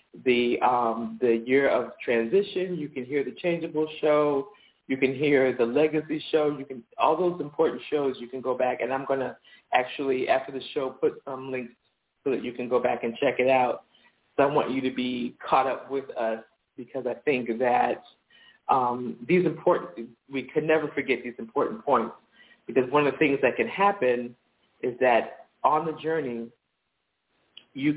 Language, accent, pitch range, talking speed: English, American, 120-145 Hz, 185 wpm